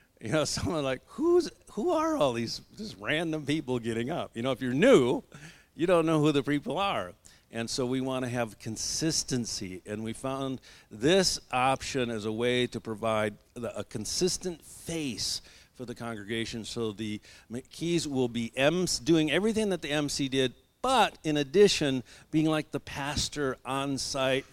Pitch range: 110-135 Hz